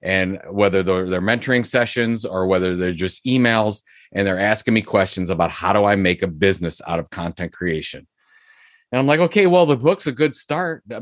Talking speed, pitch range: 200 wpm, 100-125 Hz